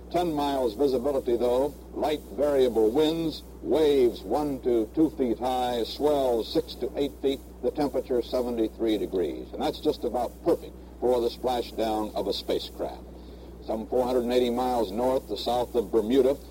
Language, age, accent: English, 60-79, American